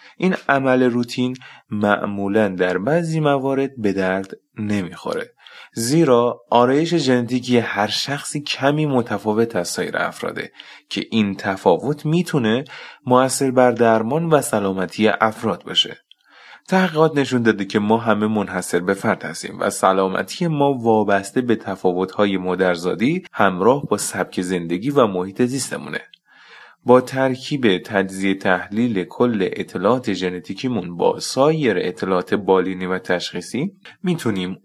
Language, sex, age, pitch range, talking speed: Persian, male, 30-49, 95-130 Hz, 120 wpm